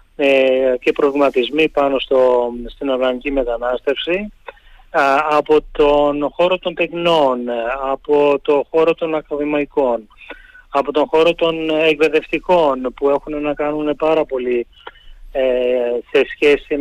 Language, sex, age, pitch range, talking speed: Greek, male, 30-49, 135-160 Hz, 115 wpm